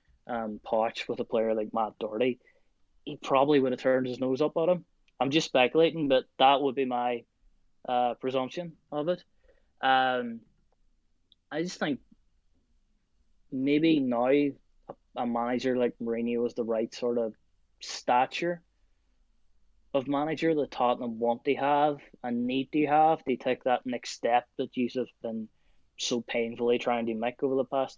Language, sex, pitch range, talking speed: English, male, 115-140 Hz, 160 wpm